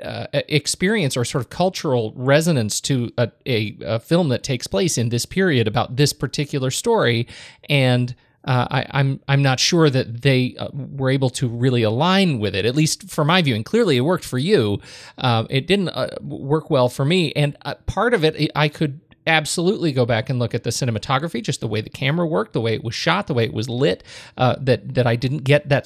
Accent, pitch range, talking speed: American, 125-155 Hz, 225 wpm